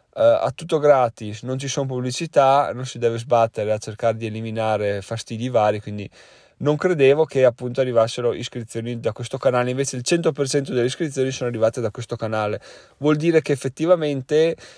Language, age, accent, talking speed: Italian, 20-39, native, 170 wpm